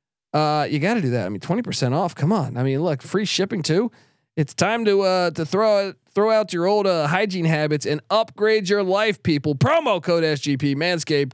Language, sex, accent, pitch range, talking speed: English, male, American, 145-200 Hz, 215 wpm